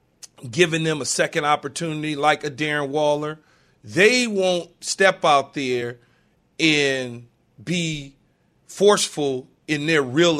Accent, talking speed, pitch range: American, 115 wpm, 145-190 Hz